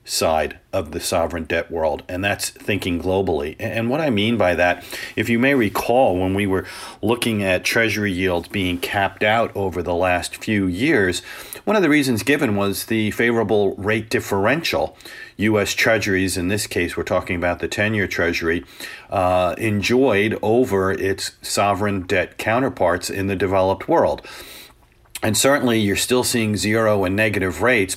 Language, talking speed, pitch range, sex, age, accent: English, 165 wpm, 95-110 Hz, male, 40-59, American